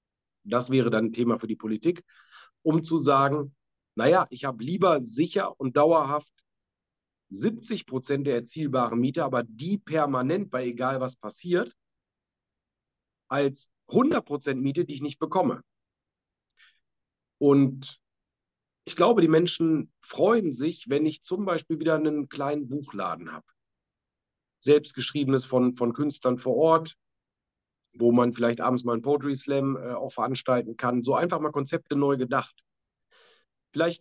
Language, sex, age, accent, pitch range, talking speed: German, male, 40-59, German, 120-145 Hz, 140 wpm